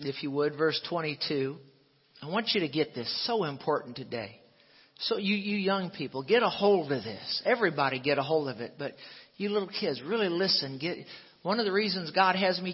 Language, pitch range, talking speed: English, 155-220 Hz, 205 wpm